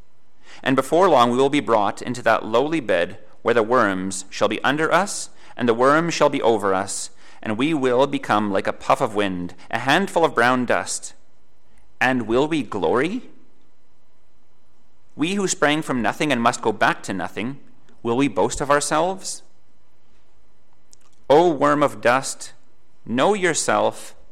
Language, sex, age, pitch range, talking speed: English, male, 30-49, 100-140 Hz, 160 wpm